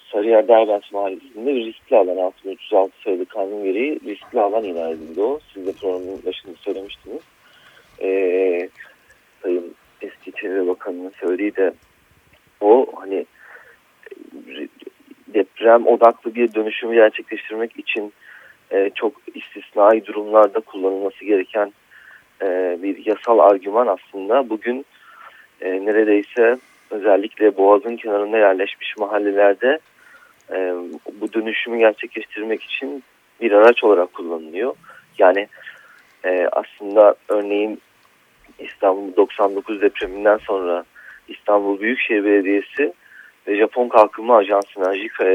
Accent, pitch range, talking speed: native, 100-125 Hz, 105 wpm